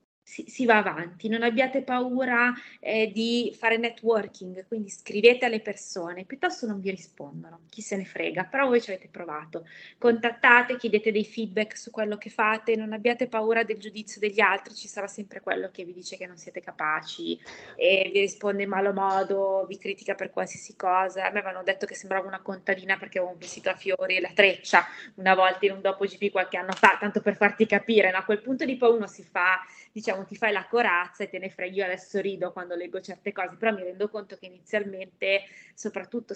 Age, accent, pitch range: 20-39, native, 190-225 Hz